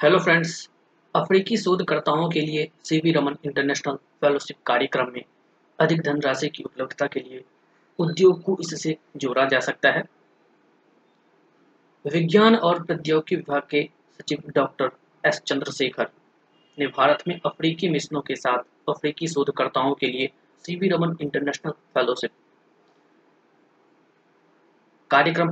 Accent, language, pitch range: native, Hindi, 140-160 Hz